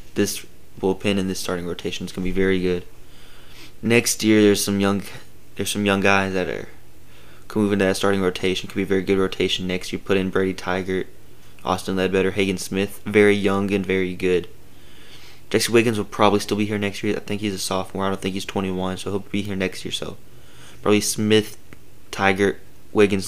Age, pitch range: 20-39, 90-105 Hz